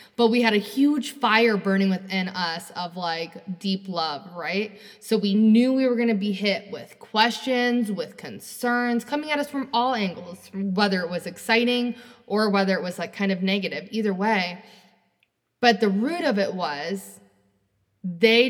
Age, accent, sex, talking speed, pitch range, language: 20-39, American, female, 175 wpm, 185-235 Hz, English